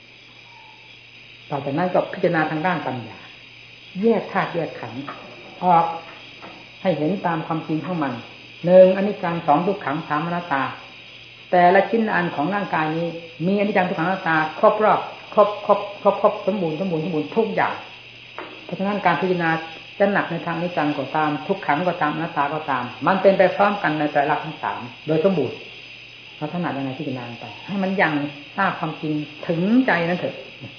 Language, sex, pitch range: English, female, 145-185 Hz